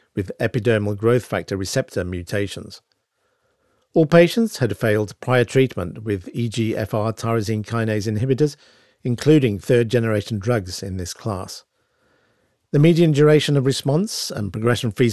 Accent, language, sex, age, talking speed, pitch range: British, English, male, 50-69, 120 wpm, 105-130 Hz